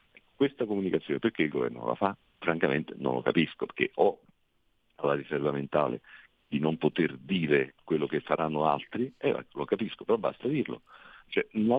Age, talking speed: 50-69, 165 wpm